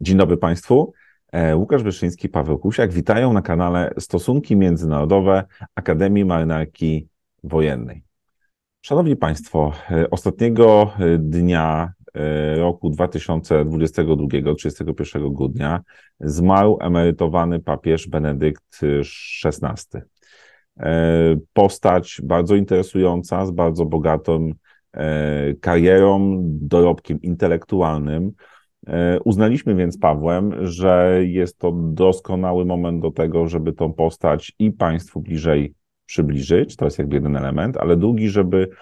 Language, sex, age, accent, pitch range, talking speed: Polish, male, 40-59, native, 80-95 Hz, 95 wpm